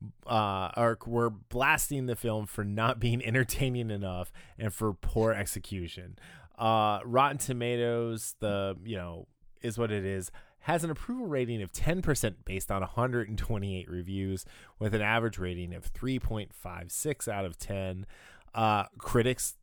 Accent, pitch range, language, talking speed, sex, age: American, 95-120 Hz, English, 140 wpm, male, 20-39